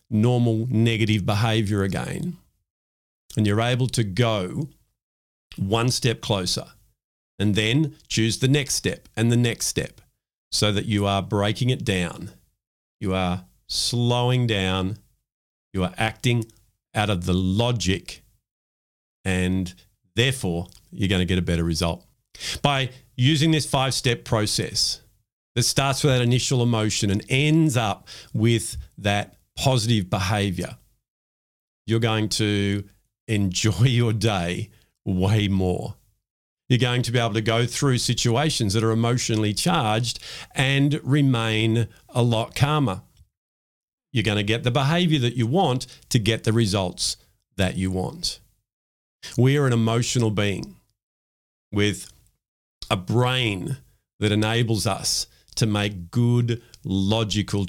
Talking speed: 130 wpm